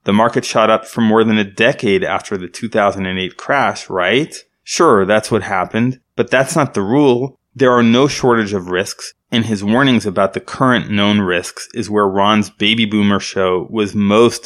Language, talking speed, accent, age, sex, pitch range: English, 185 wpm, American, 20-39, male, 100-120 Hz